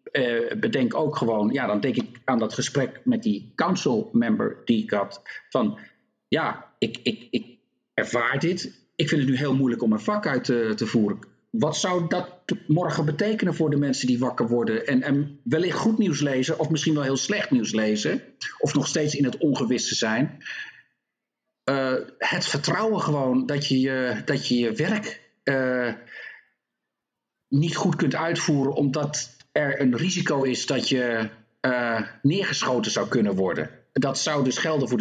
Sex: male